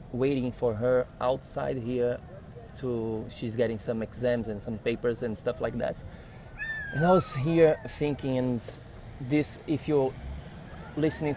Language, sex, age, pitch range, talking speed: English, male, 20-39, 105-125 Hz, 145 wpm